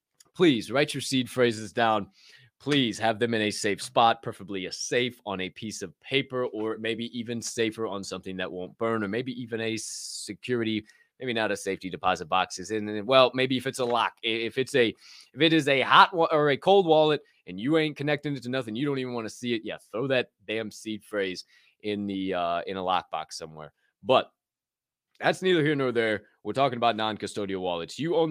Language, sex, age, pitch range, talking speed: English, male, 20-39, 105-135 Hz, 215 wpm